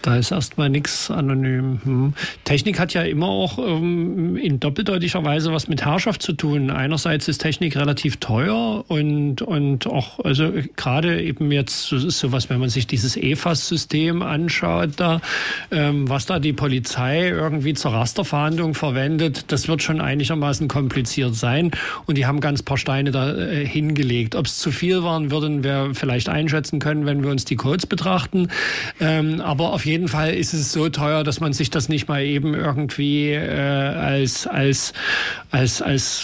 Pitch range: 135-160 Hz